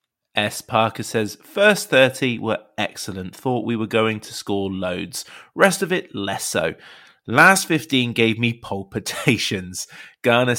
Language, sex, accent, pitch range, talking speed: English, male, British, 100-135 Hz, 140 wpm